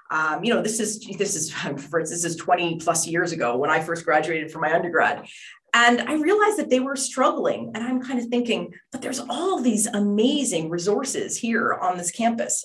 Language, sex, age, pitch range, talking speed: English, female, 30-49, 175-240 Hz, 200 wpm